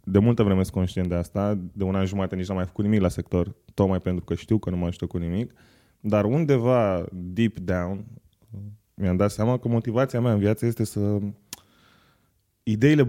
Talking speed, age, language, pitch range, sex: 200 wpm, 20-39, Romanian, 95-120 Hz, male